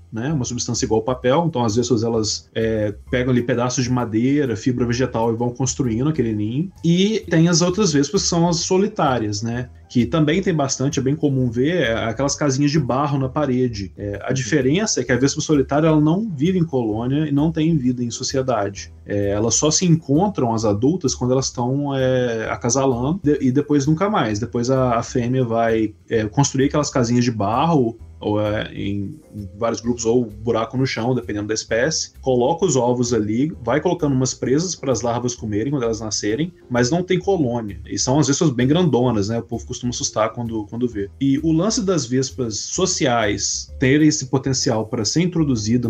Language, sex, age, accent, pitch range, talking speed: Portuguese, male, 20-39, Brazilian, 115-145 Hz, 195 wpm